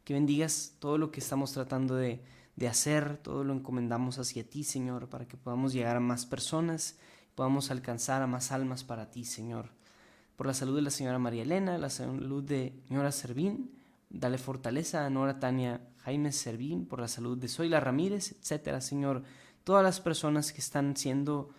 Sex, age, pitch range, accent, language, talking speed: male, 20-39, 125-145 Hz, Mexican, Spanish, 180 wpm